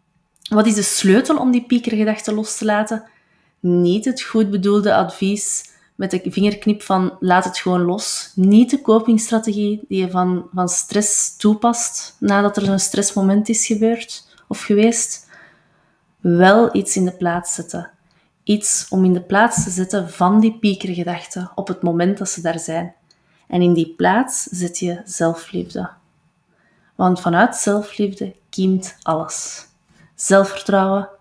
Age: 20-39